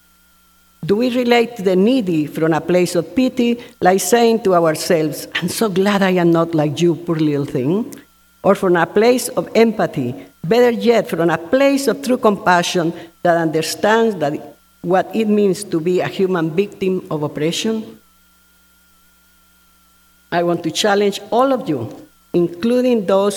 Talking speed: 155 wpm